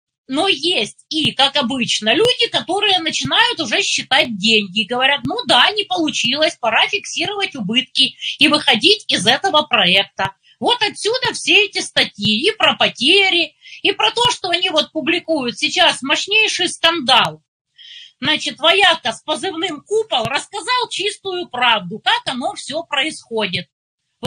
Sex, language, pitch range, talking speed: female, Russian, 255-395 Hz, 135 wpm